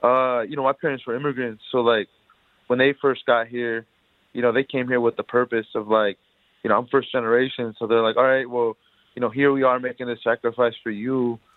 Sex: male